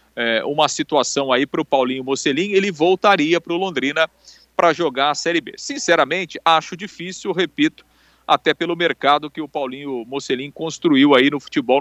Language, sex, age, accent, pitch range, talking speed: Portuguese, male, 40-59, Brazilian, 145-190 Hz, 165 wpm